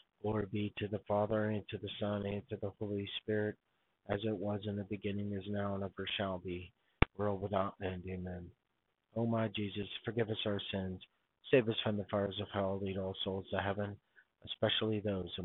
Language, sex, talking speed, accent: English, male, 205 wpm, American